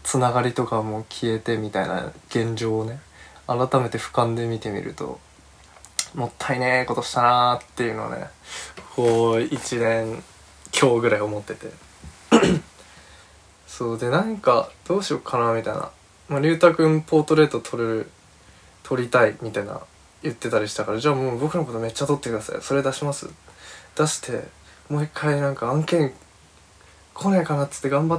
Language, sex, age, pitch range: Japanese, male, 20-39, 110-150 Hz